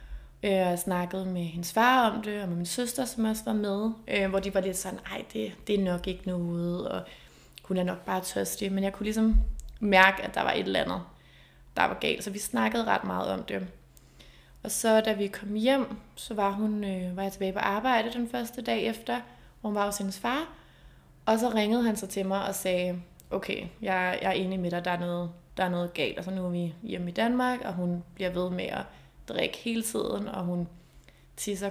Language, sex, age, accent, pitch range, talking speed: Danish, female, 20-39, native, 180-220 Hz, 235 wpm